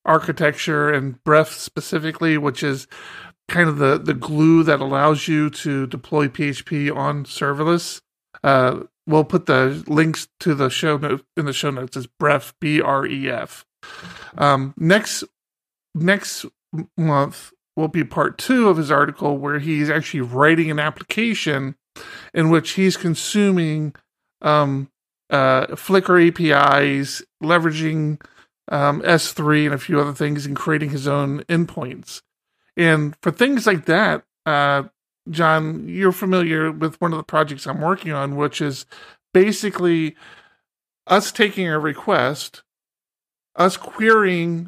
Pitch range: 145-175 Hz